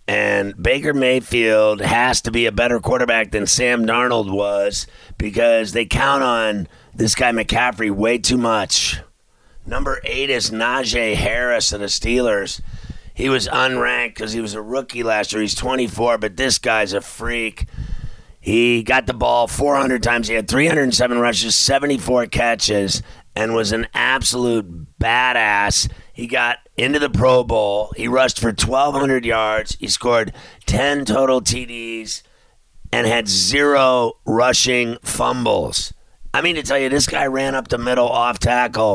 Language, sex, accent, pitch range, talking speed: English, male, American, 110-125 Hz, 155 wpm